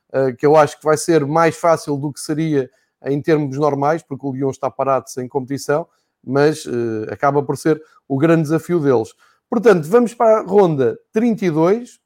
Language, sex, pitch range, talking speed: Portuguese, male, 145-180 Hz, 185 wpm